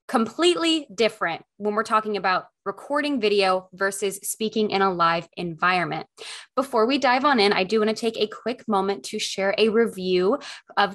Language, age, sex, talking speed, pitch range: English, 20-39, female, 175 wpm, 200-245 Hz